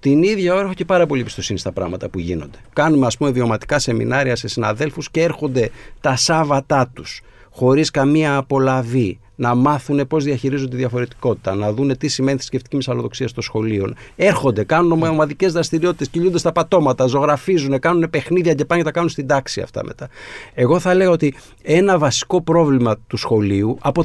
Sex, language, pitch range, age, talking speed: male, Greek, 130-185 Hz, 50-69, 170 wpm